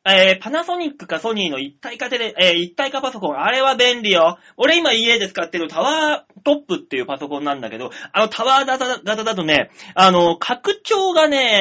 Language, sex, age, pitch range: Japanese, male, 30-49, 180-295 Hz